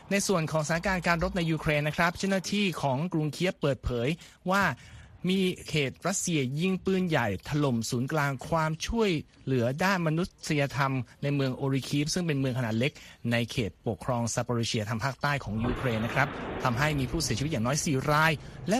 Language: Thai